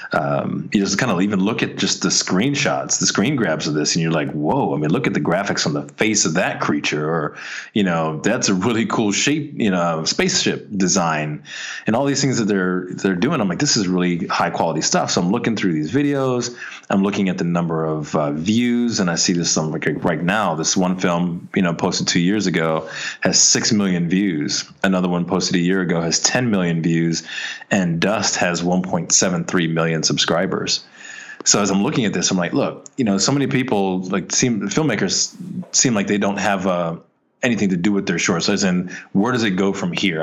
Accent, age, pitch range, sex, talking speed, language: American, 30-49, 85-100 Hz, male, 220 wpm, English